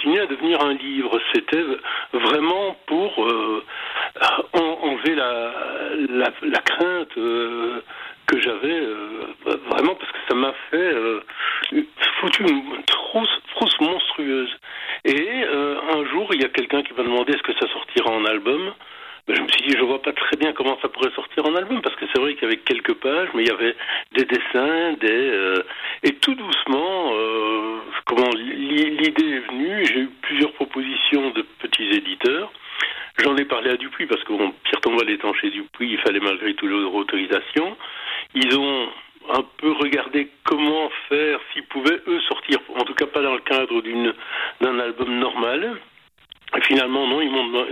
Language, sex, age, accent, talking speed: French, male, 60-79, French, 175 wpm